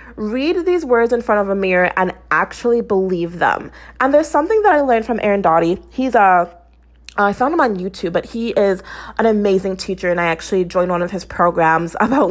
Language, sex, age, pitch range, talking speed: English, female, 20-39, 175-225 Hz, 210 wpm